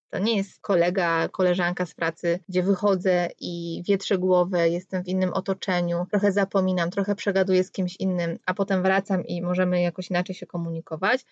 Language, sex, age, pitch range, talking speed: Polish, female, 20-39, 180-220 Hz, 170 wpm